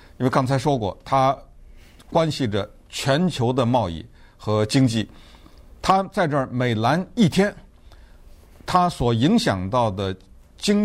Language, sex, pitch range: Chinese, male, 105-145 Hz